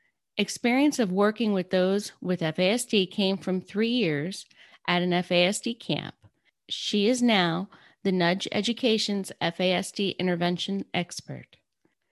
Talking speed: 120 wpm